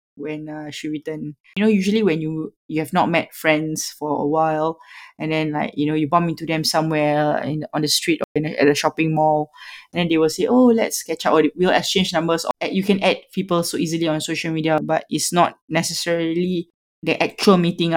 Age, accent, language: 20-39, Malaysian, English